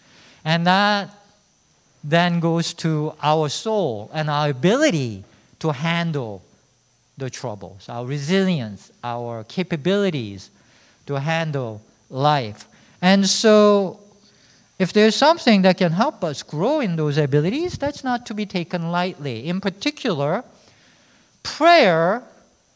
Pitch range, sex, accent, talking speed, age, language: 120-185 Hz, male, Japanese, 115 wpm, 50-69, English